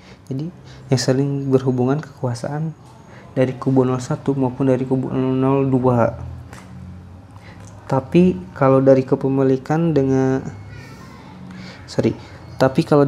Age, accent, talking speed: 20-39, native, 90 wpm